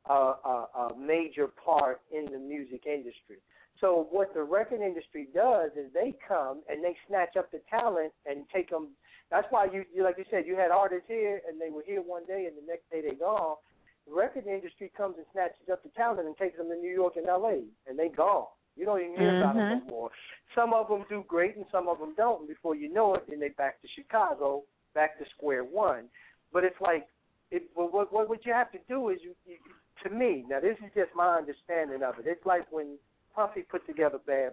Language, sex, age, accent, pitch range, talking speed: English, male, 60-79, American, 150-210 Hz, 230 wpm